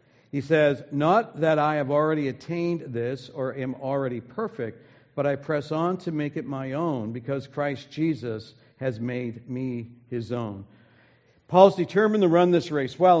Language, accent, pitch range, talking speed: English, American, 125-160 Hz, 170 wpm